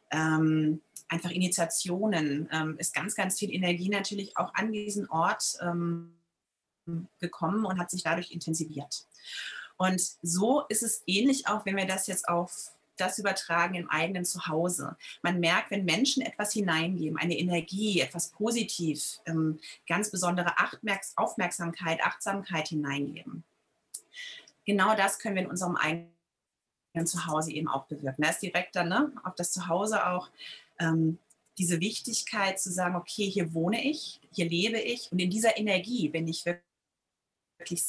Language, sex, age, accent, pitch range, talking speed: German, female, 30-49, German, 165-205 Hz, 145 wpm